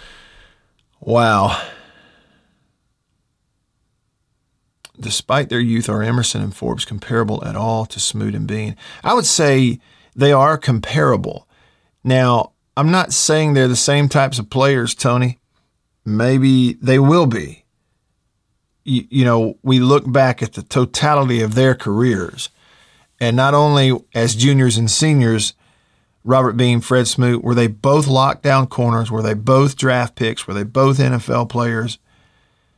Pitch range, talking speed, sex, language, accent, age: 115-135 Hz, 135 wpm, male, English, American, 50-69